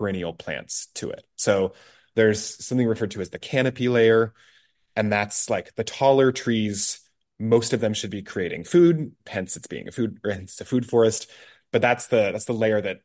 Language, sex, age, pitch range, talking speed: English, male, 20-39, 100-125 Hz, 195 wpm